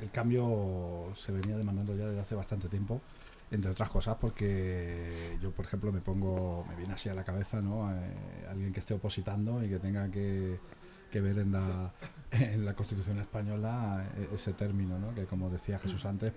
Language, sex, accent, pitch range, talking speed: Spanish, male, Spanish, 95-115 Hz, 185 wpm